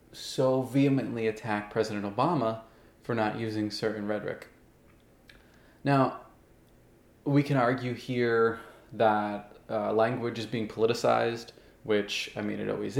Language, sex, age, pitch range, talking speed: English, male, 20-39, 110-135 Hz, 120 wpm